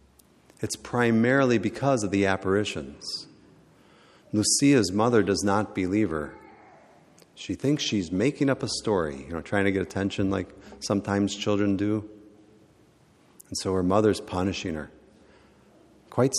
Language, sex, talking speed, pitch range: English, male, 130 wpm, 90-120 Hz